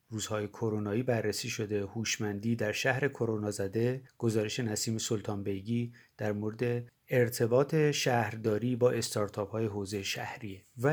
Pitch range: 115-140 Hz